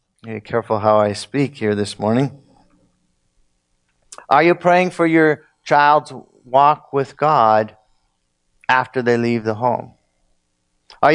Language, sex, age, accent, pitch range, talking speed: English, male, 50-69, American, 95-145 Hz, 125 wpm